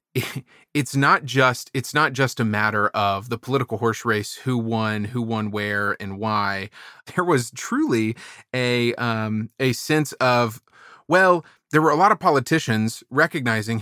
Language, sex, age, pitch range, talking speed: English, male, 30-49, 110-140 Hz, 155 wpm